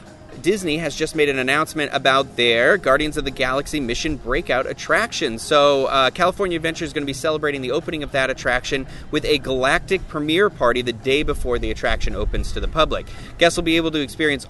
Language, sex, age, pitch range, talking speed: English, male, 30-49, 120-160 Hz, 205 wpm